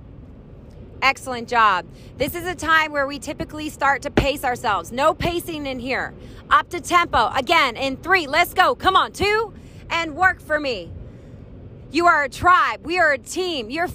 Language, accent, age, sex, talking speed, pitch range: English, American, 30-49, female, 175 wpm, 240-345 Hz